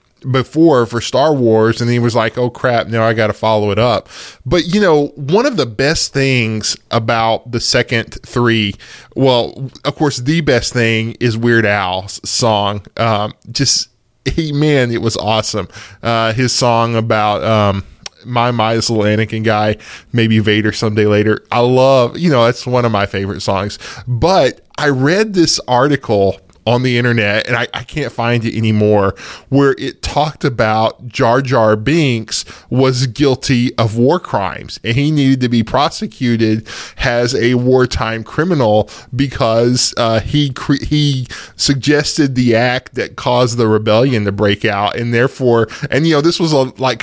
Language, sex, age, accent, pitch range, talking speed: English, male, 10-29, American, 110-130 Hz, 165 wpm